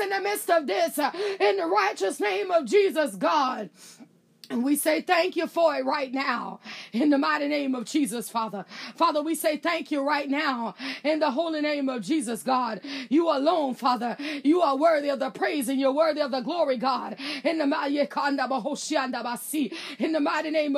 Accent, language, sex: American, English, female